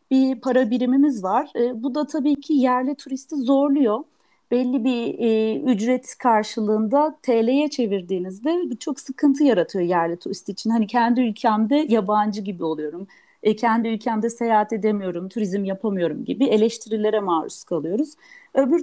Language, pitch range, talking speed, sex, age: Turkish, 215-285 Hz, 135 wpm, female, 40-59